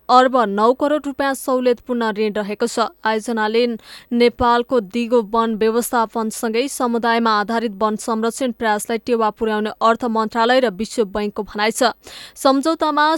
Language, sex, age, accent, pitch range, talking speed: English, female, 20-39, Indian, 225-255 Hz, 130 wpm